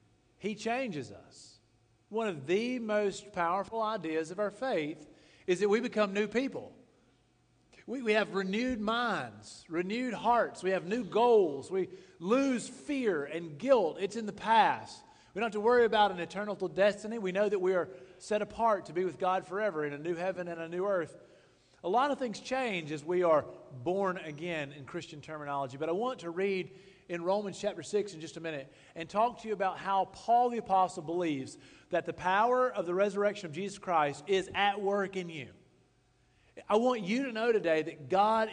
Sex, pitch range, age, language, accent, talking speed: male, 165-215 Hz, 40-59, English, American, 195 wpm